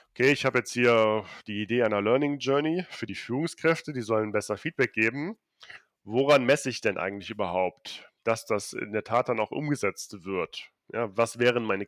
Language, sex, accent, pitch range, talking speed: German, male, German, 110-140 Hz, 180 wpm